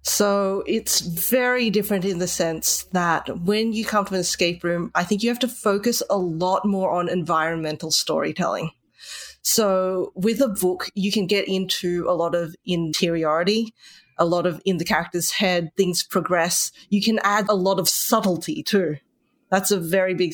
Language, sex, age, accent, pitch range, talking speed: English, female, 30-49, Australian, 175-205 Hz, 175 wpm